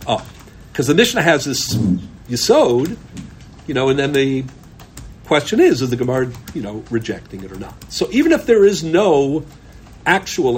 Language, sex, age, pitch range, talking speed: English, male, 50-69, 120-170 Hz, 170 wpm